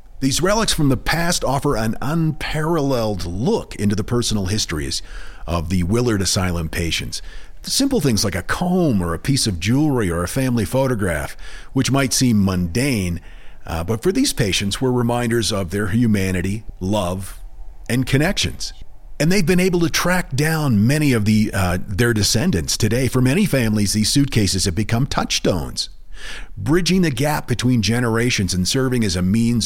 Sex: male